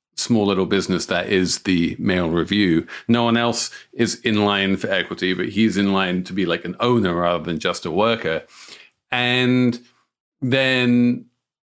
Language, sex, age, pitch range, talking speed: English, male, 40-59, 105-140 Hz, 165 wpm